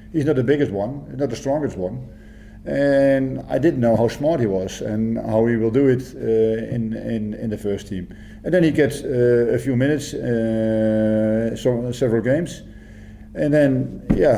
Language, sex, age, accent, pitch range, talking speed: English, male, 50-69, Dutch, 110-135 Hz, 190 wpm